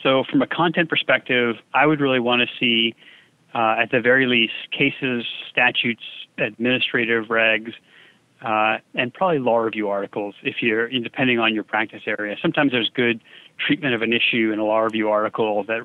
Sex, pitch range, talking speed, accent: male, 110-125 Hz, 175 wpm, American